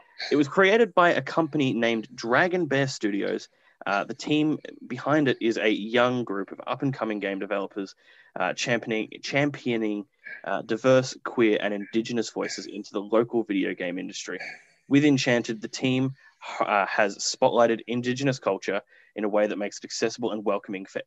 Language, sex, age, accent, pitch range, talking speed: English, male, 20-39, Australian, 110-145 Hz, 160 wpm